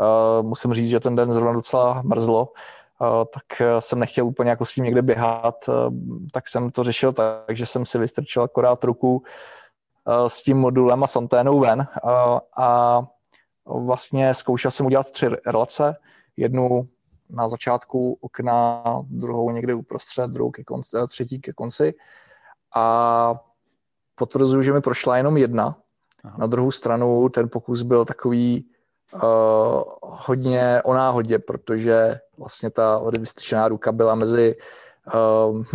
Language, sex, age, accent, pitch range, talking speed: Czech, male, 20-39, native, 115-130 Hz, 140 wpm